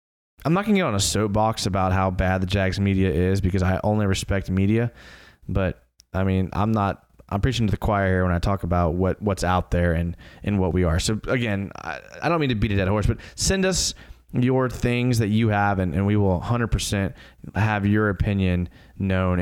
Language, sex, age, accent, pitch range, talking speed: English, male, 20-39, American, 90-110 Hz, 225 wpm